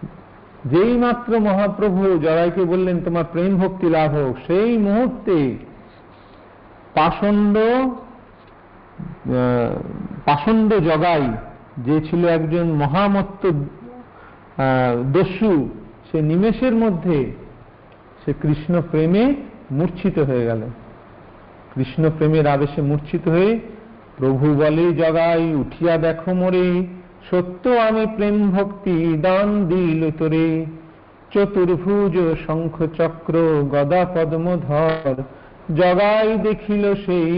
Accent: native